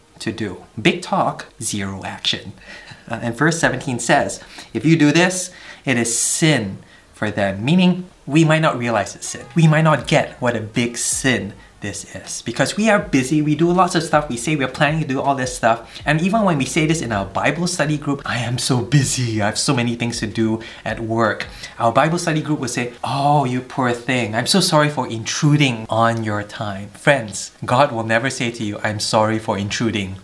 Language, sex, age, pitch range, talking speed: English, male, 20-39, 110-150 Hz, 210 wpm